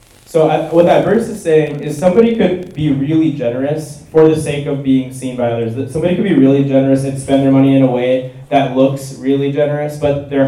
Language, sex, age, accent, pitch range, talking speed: English, male, 10-29, American, 120-140 Hz, 220 wpm